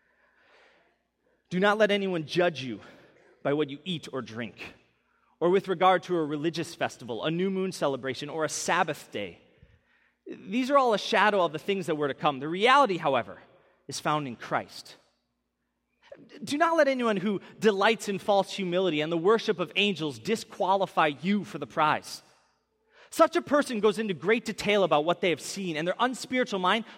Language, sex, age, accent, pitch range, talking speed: English, male, 30-49, American, 175-255 Hz, 180 wpm